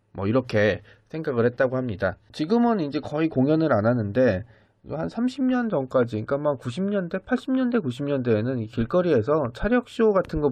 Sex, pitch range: male, 105-150 Hz